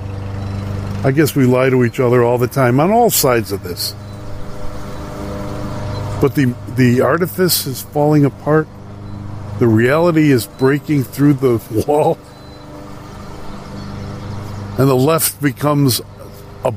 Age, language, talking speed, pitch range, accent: 50-69, English, 120 wpm, 100-140 Hz, American